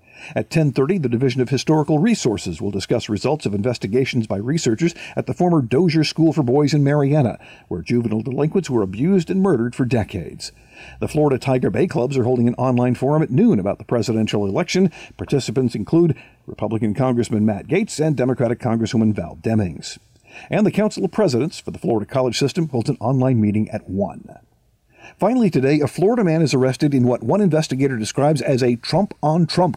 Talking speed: 180 wpm